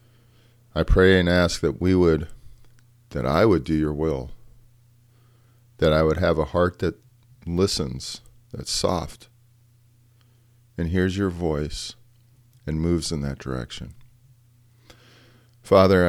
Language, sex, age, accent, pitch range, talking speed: English, male, 40-59, American, 85-120 Hz, 125 wpm